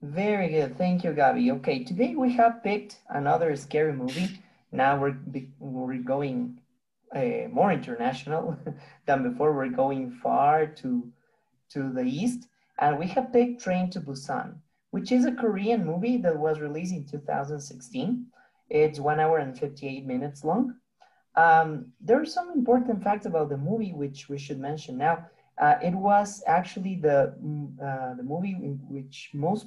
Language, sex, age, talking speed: Spanish, male, 30-49, 160 wpm